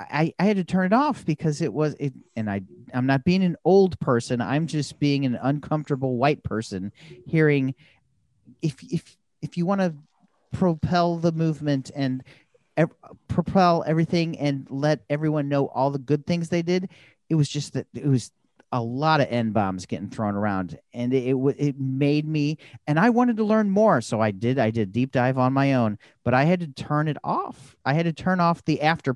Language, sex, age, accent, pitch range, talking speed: English, male, 40-59, American, 120-160 Hz, 205 wpm